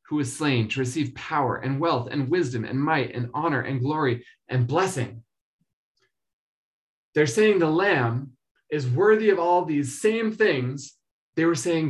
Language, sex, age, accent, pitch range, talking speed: English, male, 20-39, American, 125-175 Hz, 160 wpm